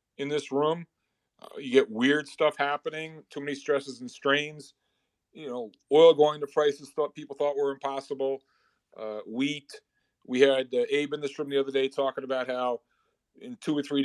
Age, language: 40-59, English